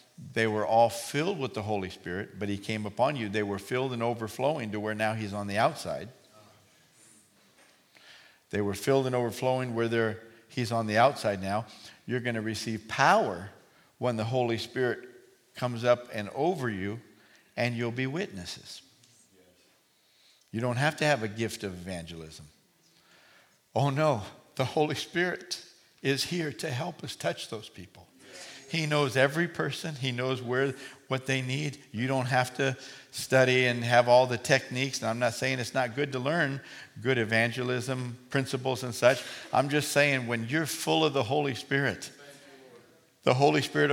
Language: English